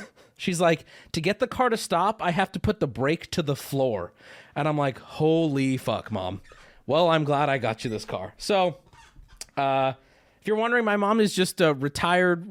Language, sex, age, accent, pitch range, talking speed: English, male, 20-39, American, 130-195 Hz, 200 wpm